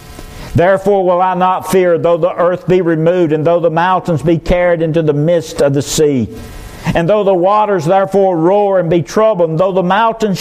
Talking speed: 200 wpm